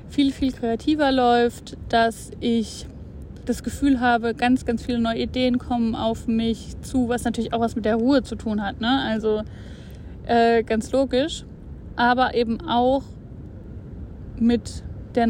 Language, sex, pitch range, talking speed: German, female, 230-255 Hz, 150 wpm